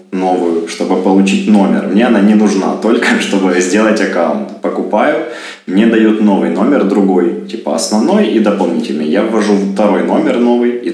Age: 20-39